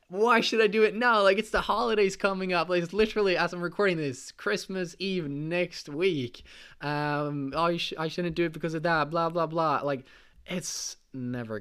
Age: 20-39